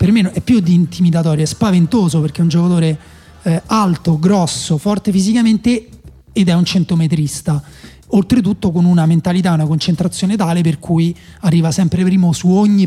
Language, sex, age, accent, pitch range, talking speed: Italian, male, 30-49, native, 155-195 Hz, 165 wpm